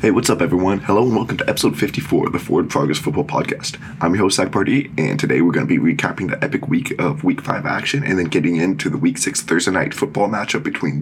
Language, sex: English, male